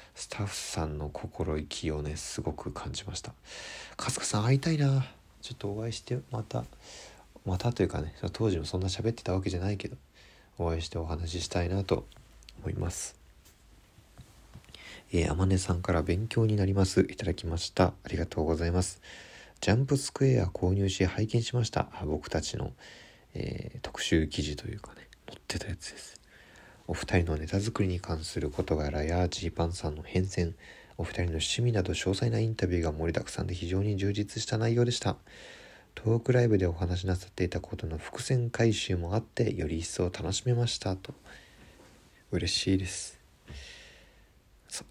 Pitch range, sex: 85-110 Hz, male